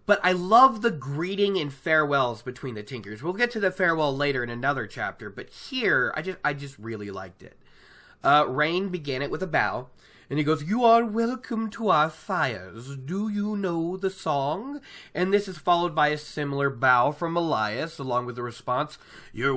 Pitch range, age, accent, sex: 130-180 Hz, 30-49, American, male